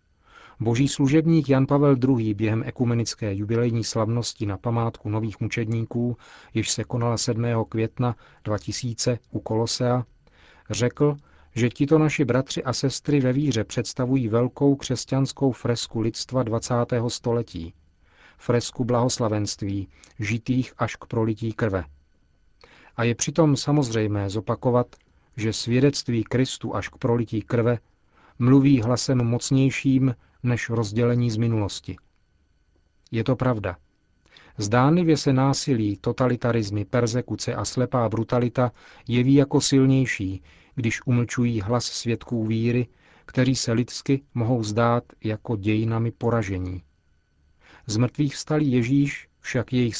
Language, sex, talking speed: Czech, male, 115 wpm